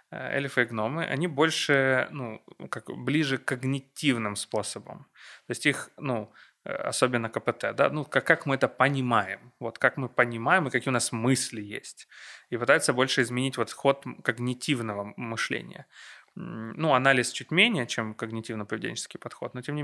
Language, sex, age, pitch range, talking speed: Ukrainian, male, 20-39, 115-135 Hz, 155 wpm